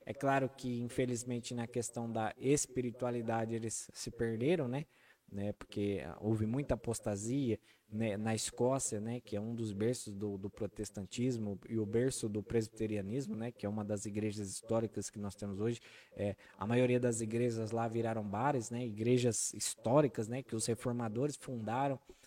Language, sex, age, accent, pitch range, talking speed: Portuguese, male, 20-39, Brazilian, 115-135 Hz, 160 wpm